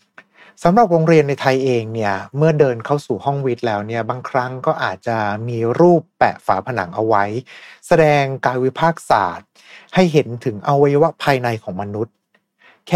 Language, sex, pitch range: Thai, male, 110-155 Hz